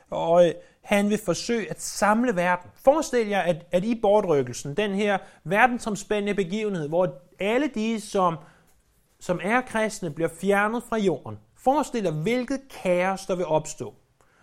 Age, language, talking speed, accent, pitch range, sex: 30-49, Danish, 145 wpm, native, 145-195 Hz, male